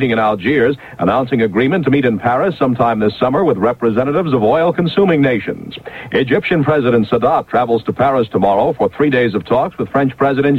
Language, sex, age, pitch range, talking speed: English, male, 60-79, 120-150 Hz, 175 wpm